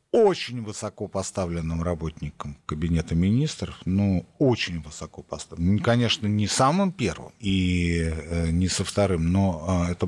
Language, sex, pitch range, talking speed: Russian, male, 90-125 Hz, 120 wpm